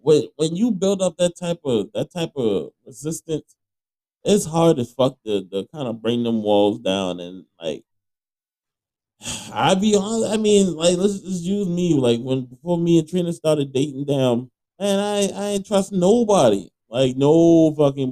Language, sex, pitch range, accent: English, male, 115-160 Hz, American